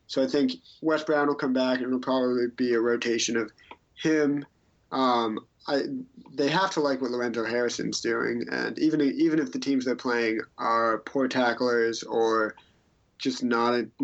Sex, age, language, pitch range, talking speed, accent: male, 30-49, English, 115-130 Hz, 175 wpm, American